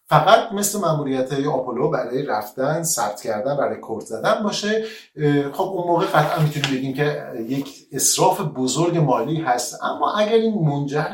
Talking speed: 155 wpm